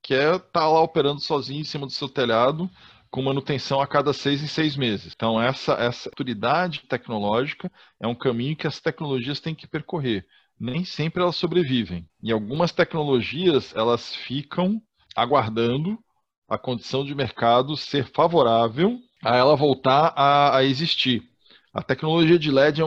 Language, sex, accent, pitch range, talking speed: Portuguese, male, Brazilian, 120-165 Hz, 155 wpm